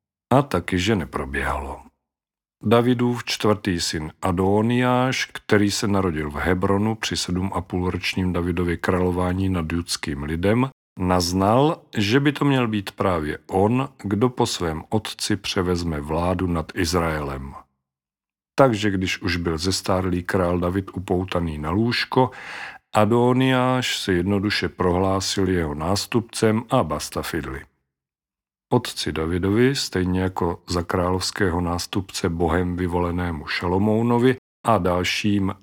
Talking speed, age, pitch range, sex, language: 115 wpm, 50-69, 85-105 Hz, male, Czech